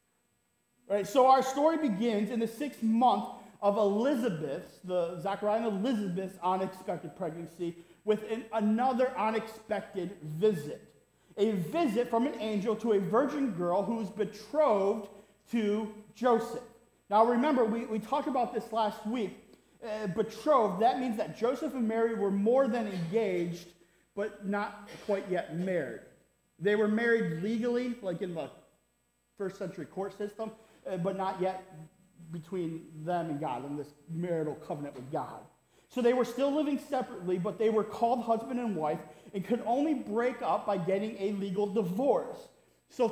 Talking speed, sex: 155 wpm, male